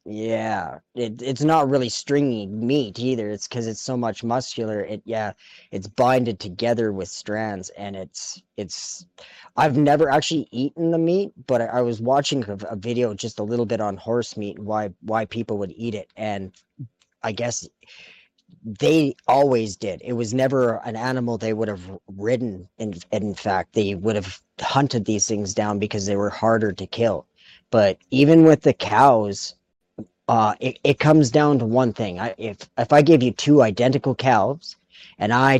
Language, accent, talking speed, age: English, American, 180 wpm, 40-59